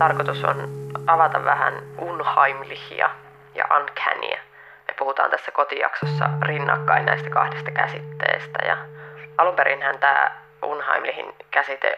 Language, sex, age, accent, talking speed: Finnish, female, 20-39, native, 95 wpm